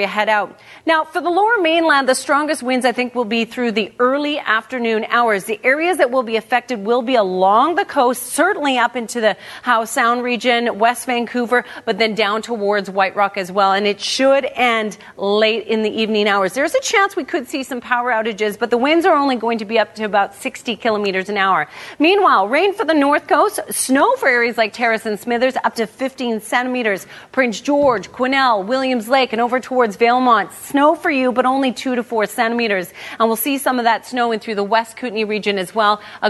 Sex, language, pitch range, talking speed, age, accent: female, English, 220-275 Hz, 215 wpm, 40-59, American